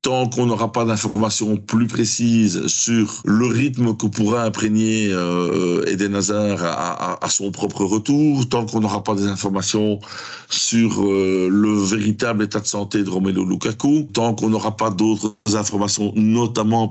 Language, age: French, 60-79